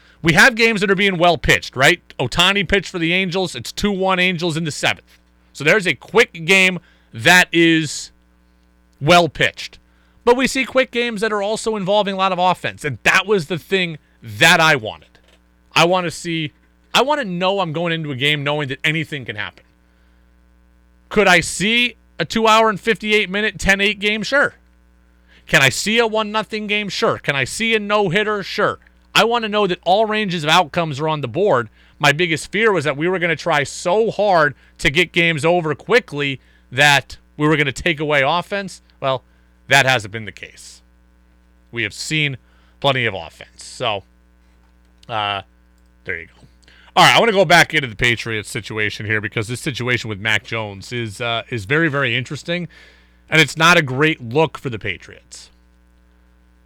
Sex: male